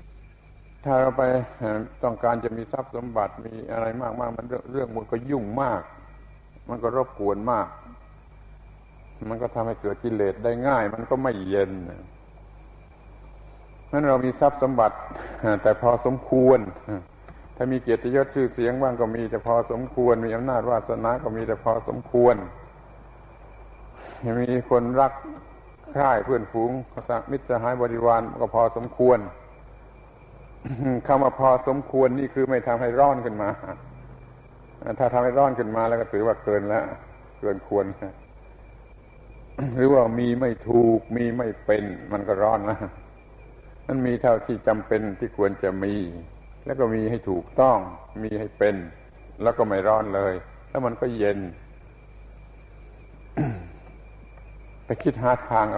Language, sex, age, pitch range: Thai, male, 60-79, 110-125 Hz